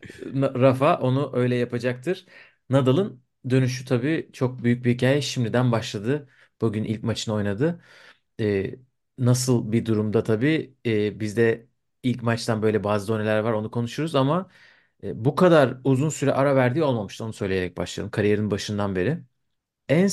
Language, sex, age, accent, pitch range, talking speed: Turkish, male, 40-59, native, 110-140 Hz, 145 wpm